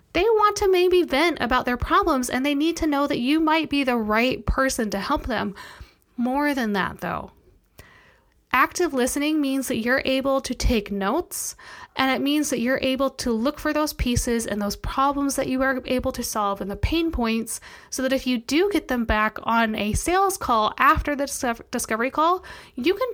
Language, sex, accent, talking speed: English, female, American, 200 wpm